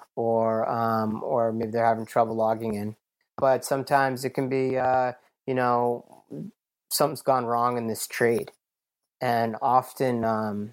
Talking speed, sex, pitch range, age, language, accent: 145 wpm, male, 110-130 Hz, 30-49, English, American